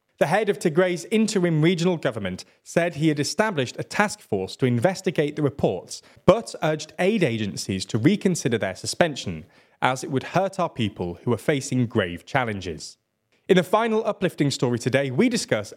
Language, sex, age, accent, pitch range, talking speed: English, male, 20-39, British, 115-185 Hz, 170 wpm